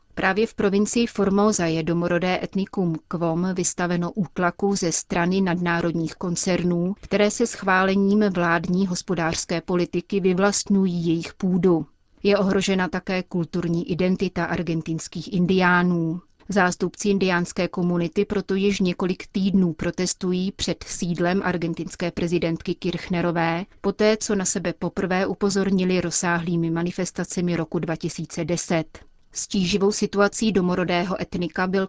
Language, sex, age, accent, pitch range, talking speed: Czech, female, 30-49, native, 175-195 Hz, 110 wpm